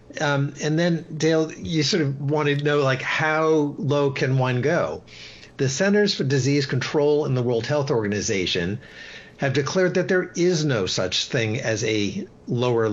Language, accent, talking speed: English, American, 170 wpm